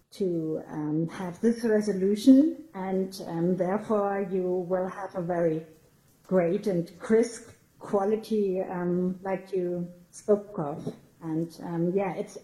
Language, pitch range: English, 180-215 Hz